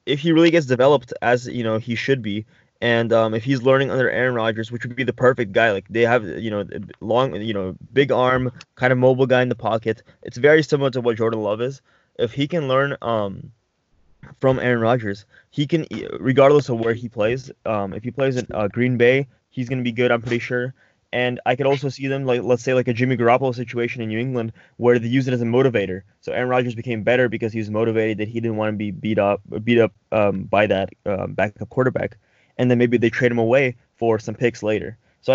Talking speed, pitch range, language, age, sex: 240 wpm, 115-130 Hz, English, 20-39, male